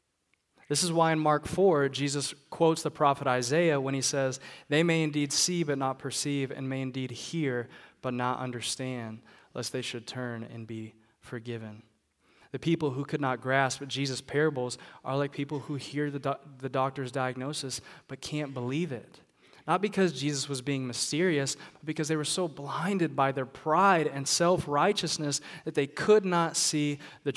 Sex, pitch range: male, 125-150 Hz